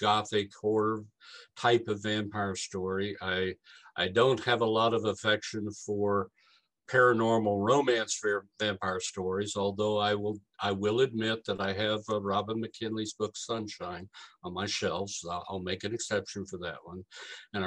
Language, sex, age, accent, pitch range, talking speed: English, male, 60-79, American, 100-125 Hz, 150 wpm